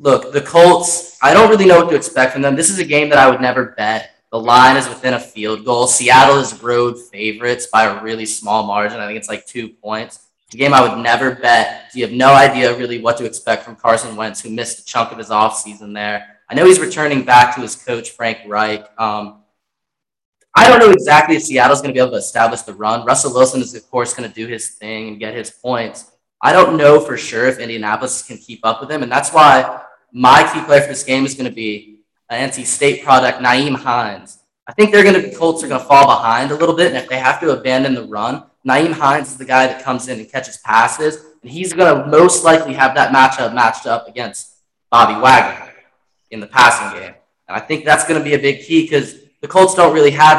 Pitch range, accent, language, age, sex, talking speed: 115-140 Hz, American, English, 10-29, male, 245 wpm